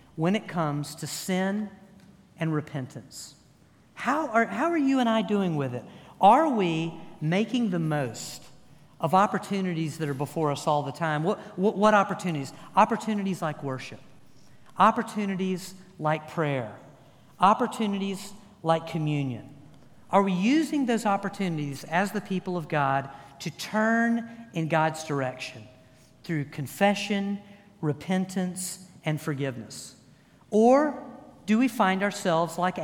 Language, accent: English, American